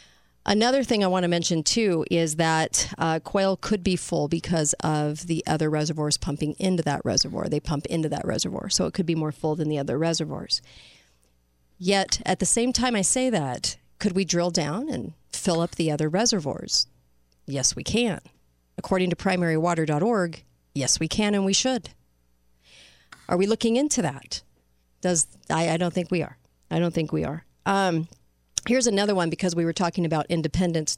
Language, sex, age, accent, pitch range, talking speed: English, female, 40-59, American, 150-190 Hz, 185 wpm